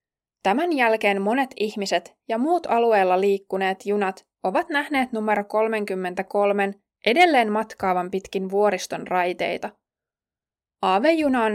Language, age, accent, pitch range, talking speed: Finnish, 20-39, native, 190-245 Hz, 105 wpm